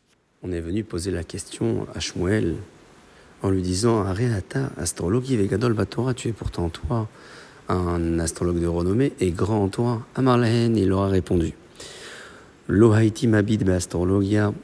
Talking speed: 145 wpm